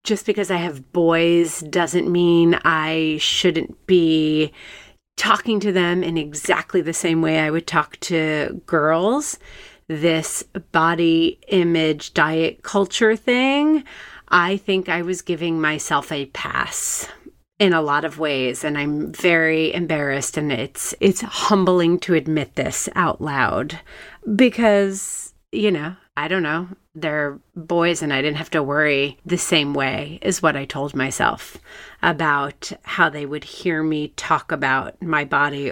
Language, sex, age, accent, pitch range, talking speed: English, female, 30-49, American, 155-195 Hz, 145 wpm